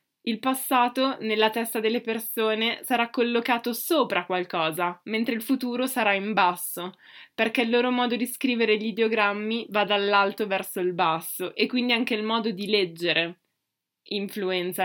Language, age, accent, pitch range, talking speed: Italian, 20-39, native, 195-245 Hz, 150 wpm